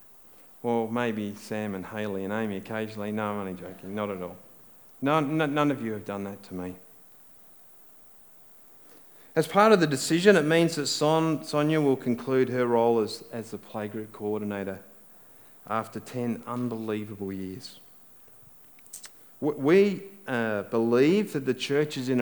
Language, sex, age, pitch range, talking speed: English, male, 40-59, 110-150 Hz, 150 wpm